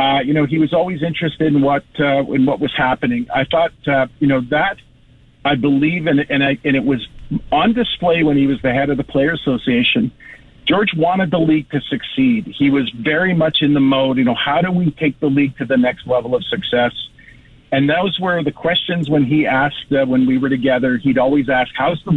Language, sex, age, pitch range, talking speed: English, male, 50-69, 135-155 Hz, 225 wpm